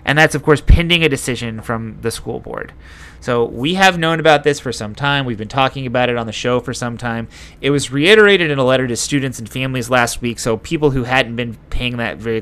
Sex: male